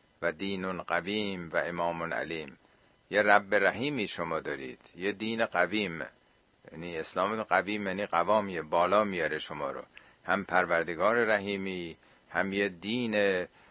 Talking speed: 125 wpm